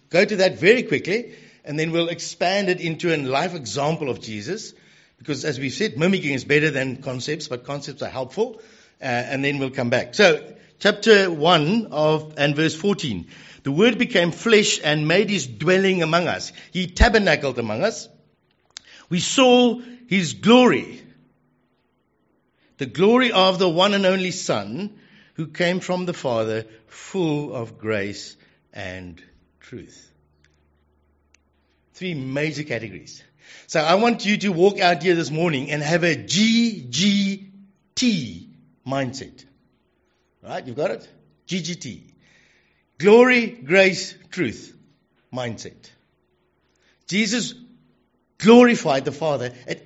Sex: male